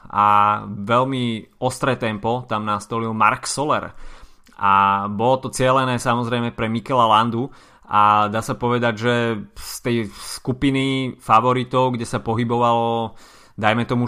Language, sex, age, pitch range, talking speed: Slovak, male, 20-39, 105-125 Hz, 130 wpm